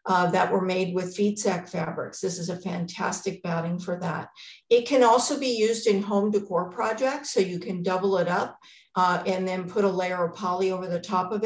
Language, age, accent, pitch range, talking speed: English, 50-69, American, 185-220 Hz, 220 wpm